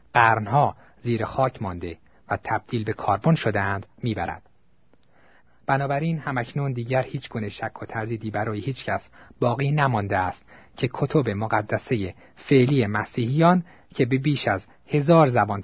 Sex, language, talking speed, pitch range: male, Persian, 135 wpm, 100-135 Hz